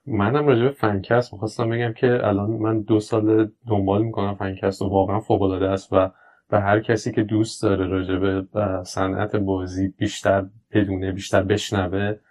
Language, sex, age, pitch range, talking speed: Persian, male, 20-39, 100-115 Hz, 155 wpm